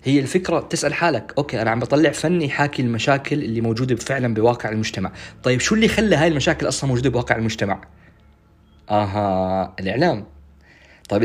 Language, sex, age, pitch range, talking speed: Arabic, male, 20-39, 120-170 Hz, 155 wpm